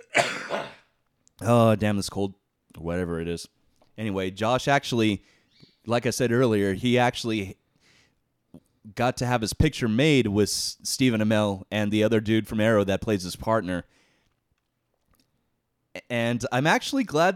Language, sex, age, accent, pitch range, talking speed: English, male, 30-49, American, 105-135 Hz, 135 wpm